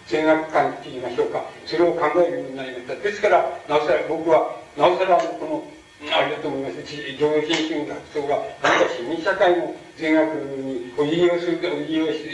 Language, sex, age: Japanese, male, 60-79